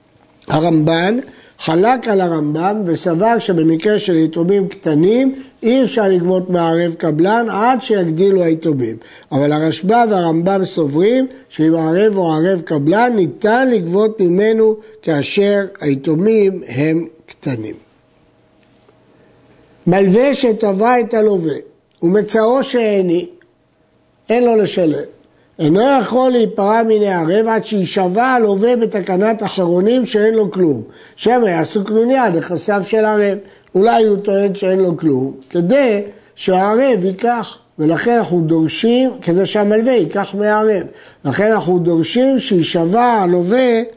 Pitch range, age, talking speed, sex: 170-225 Hz, 60-79, 110 wpm, male